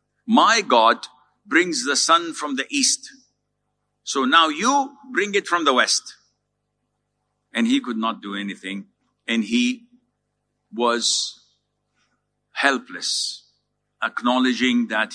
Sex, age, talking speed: male, 50-69, 110 wpm